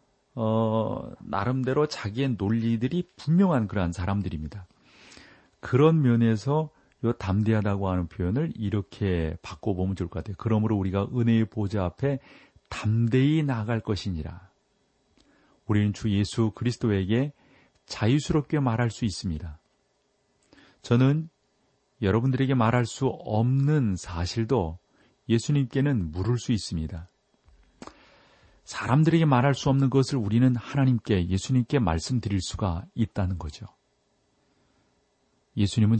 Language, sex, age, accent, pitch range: Korean, male, 40-59, native, 95-125 Hz